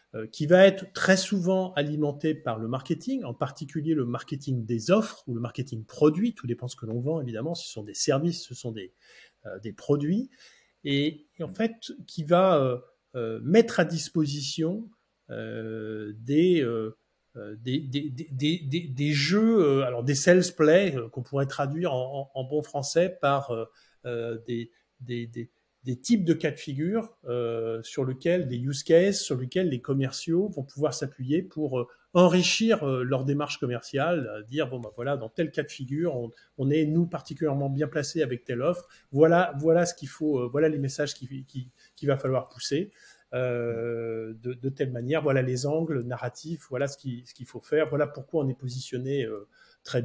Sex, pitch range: male, 125-165 Hz